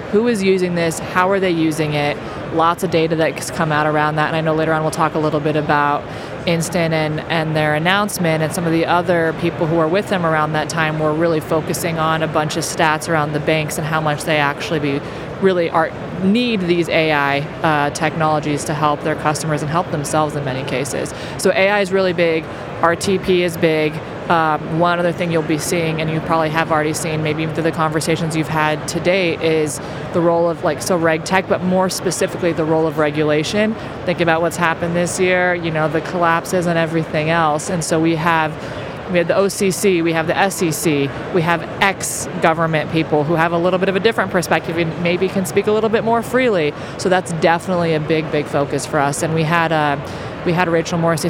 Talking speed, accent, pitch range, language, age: 220 wpm, American, 155-175 Hz, English, 20-39